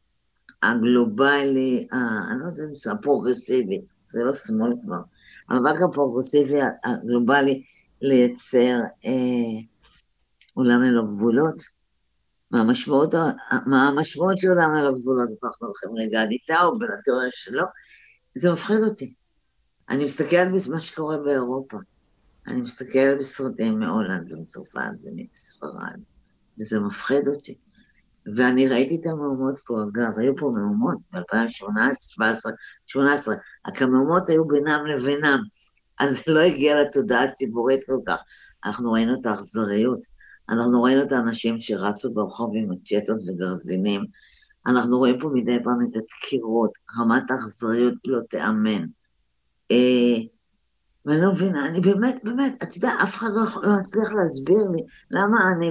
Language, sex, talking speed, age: Hebrew, female, 120 wpm, 50-69